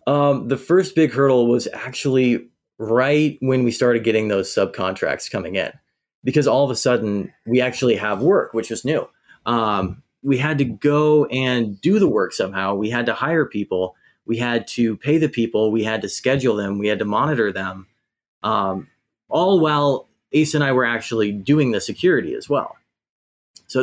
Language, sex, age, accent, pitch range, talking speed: English, male, 30-49, American, 105-130 Hz, 185 wpm